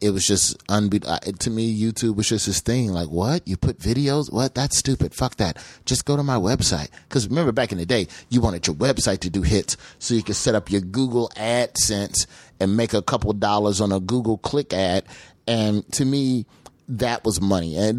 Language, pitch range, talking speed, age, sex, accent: English, 90-115 Hz, 210 wpm, 30-49, male, American